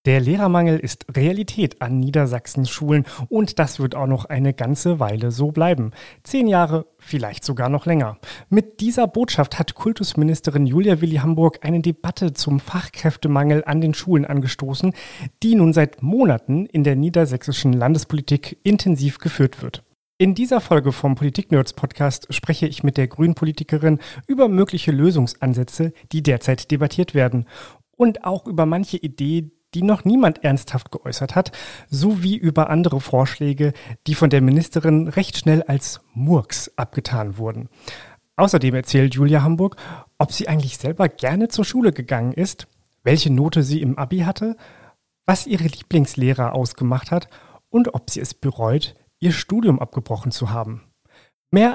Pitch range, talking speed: 135-170 Hz, 145 wpm